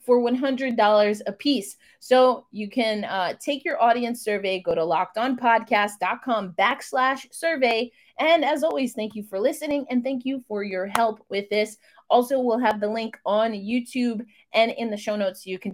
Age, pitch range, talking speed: 20-39, 205-260 Hz, 175 wpm